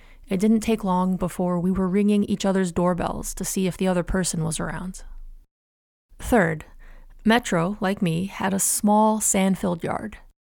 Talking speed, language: 160 wpm, English